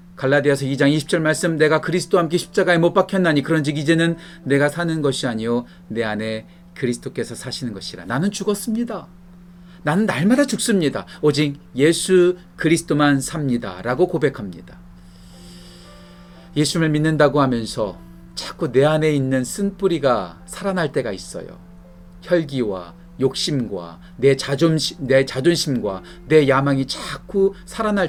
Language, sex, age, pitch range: Korean, male, 40-59, 120-175 Hz